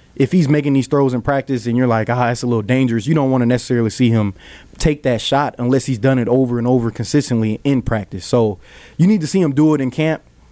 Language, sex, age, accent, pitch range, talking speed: English, male, 20-39, American, 110-130 Hz, 255 wpm